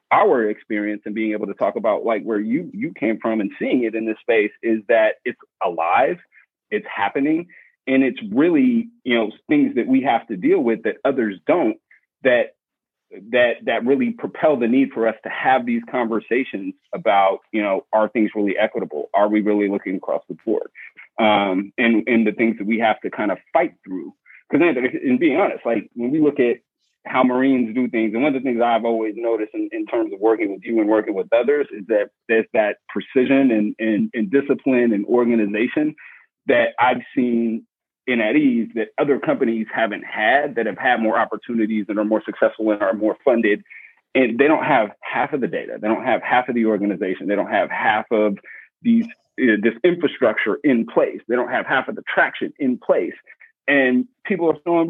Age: 30-49